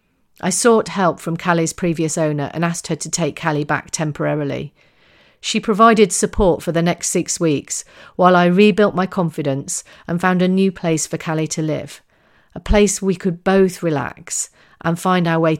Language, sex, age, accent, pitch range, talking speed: English, female, 40-59, British, 160-200 Hz, 180 wpm